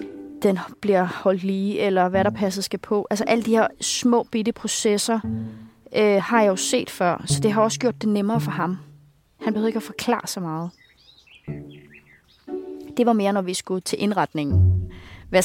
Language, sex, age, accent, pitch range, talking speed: Danish, female, 30-49, native, 160-215 Hz, 185 wpm